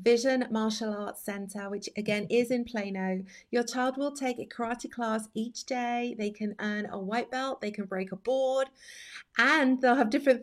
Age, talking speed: 30-49, 190 wpm